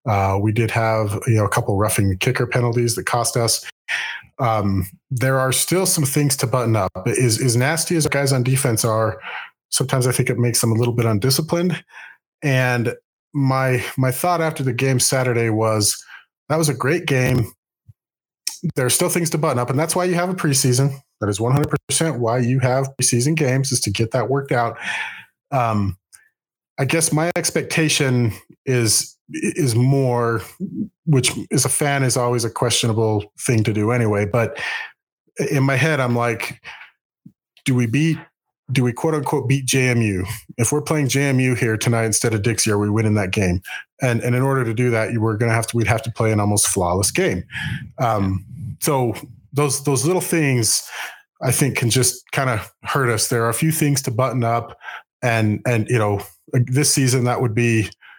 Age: 30-49